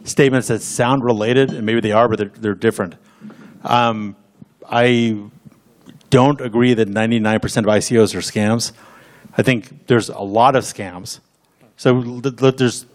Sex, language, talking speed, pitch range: male, English, 145 wpm, 110-130 Hz